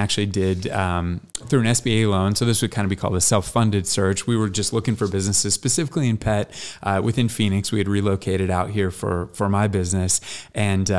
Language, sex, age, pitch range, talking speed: English, male, 20-39, 95-115 Hz, 215 wpm